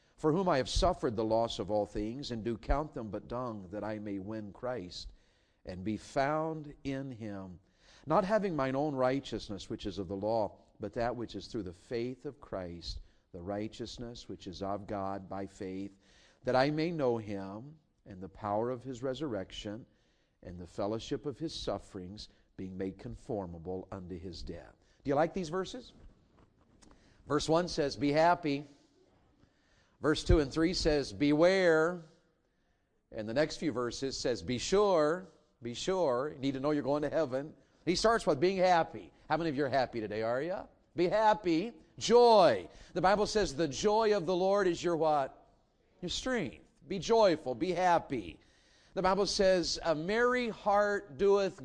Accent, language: American, English